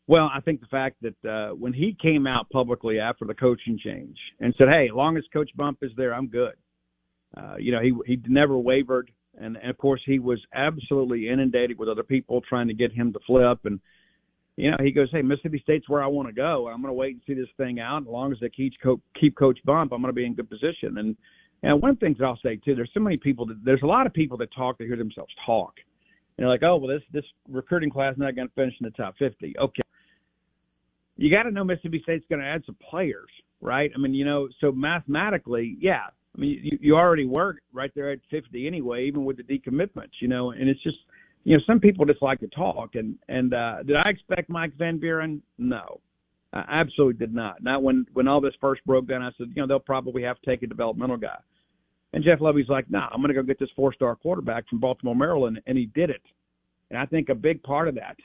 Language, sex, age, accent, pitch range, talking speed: English, male, 50-69, American, 125-145 Hz, 250 wpm